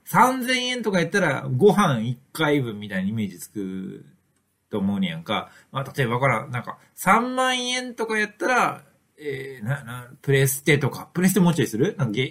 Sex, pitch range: male, 125-195 Hz